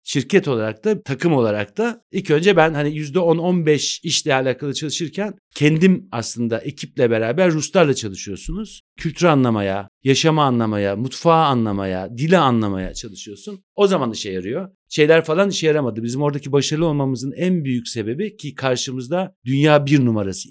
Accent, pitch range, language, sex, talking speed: native, 115-170 Hz, Turkish, male, 145 wpm